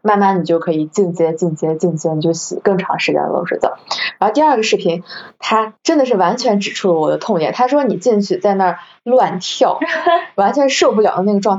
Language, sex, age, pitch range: Chinese, female, 20-39, 170-205 Hz